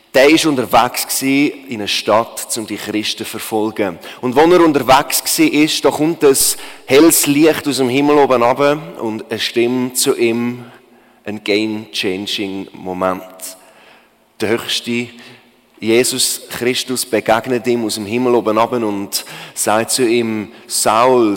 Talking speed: 145 wpm